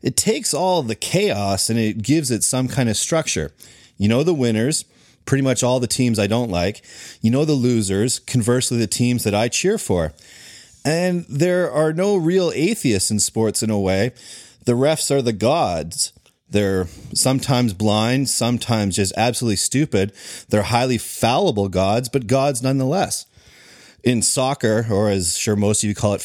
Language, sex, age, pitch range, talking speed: English, male, 30-49, 110-140 Hz, 175 wpm